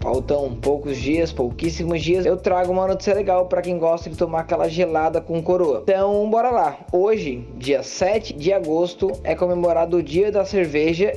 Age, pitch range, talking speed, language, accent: 20-39, 175-205 Hz, 175 wpm, Portuguese, Brazilian